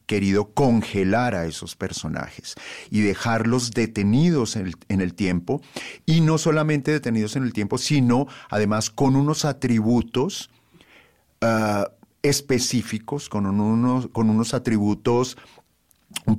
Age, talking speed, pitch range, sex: 40-59, 110 wpm, 105-130 Hz, male